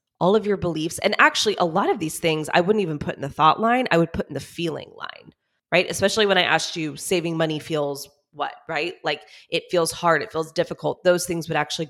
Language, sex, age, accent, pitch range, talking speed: English, female, 20-39, American, 155-195 Hz, 240 wpm